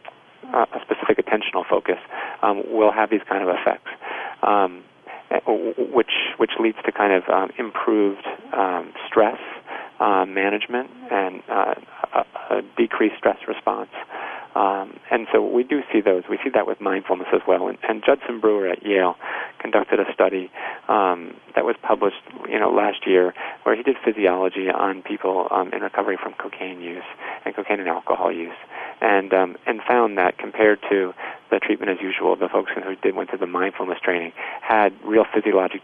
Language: English